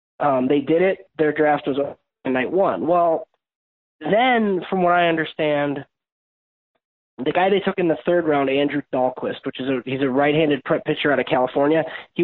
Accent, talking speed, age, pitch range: American, 190 wpm, 20-39, 135-165 Hz